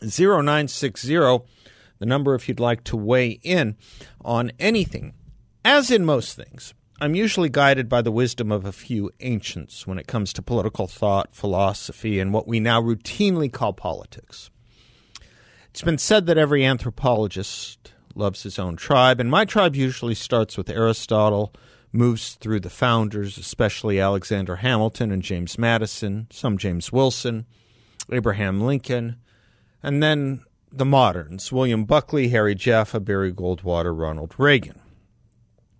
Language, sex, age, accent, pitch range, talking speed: English, male, 50-69, American, 105-135 Hz, 140 wpm